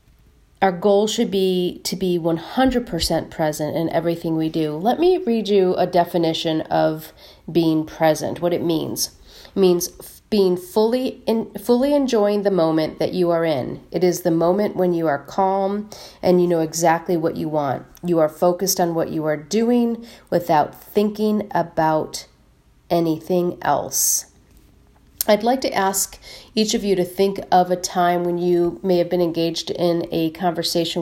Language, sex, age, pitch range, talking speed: English, female, 40-59, 160-190 Hz, 165 wpm